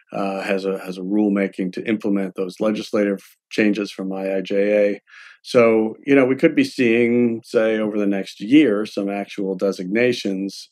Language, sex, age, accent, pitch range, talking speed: English, male, 50-69, American, 95-105 Hz, 155 wpm